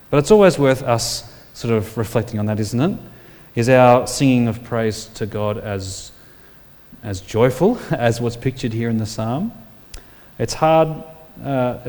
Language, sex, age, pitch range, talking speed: English, male, 30-49, 110-140 Hz, 160 wpm